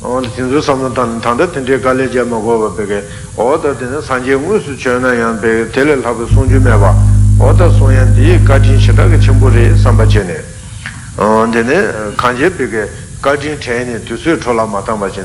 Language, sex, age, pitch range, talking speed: Italian, male, 60-79, 110-135 Hz, 80 wpm